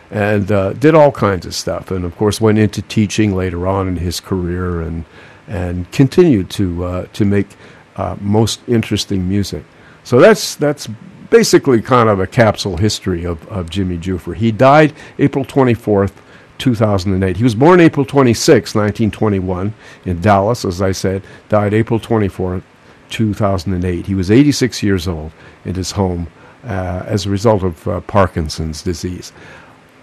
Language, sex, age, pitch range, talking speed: English, male, 50-69, 95-115 Hz, 165 wpm